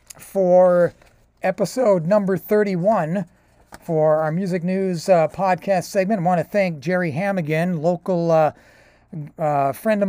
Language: English